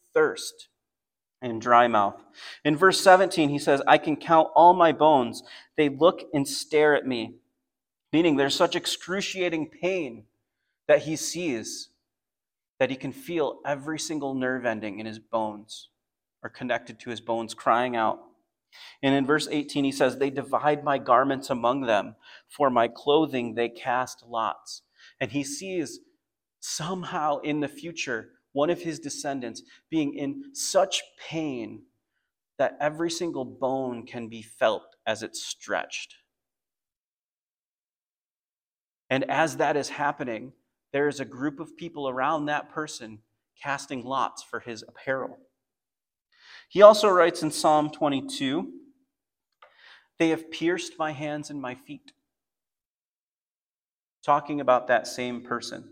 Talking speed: 135 wpm